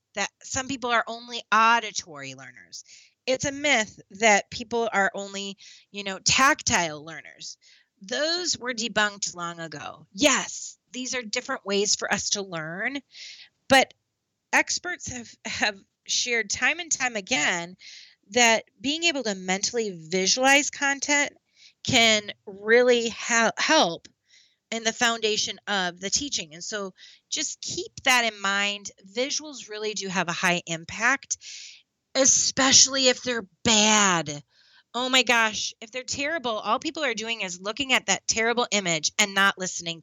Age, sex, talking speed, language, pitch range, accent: 30-49, female, 140 wpm, English, 195-265 Hz, American